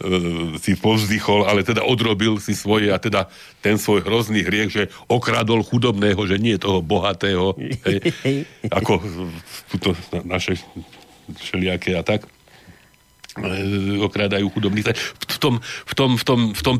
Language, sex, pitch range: Slovak, male, 95-115 Hz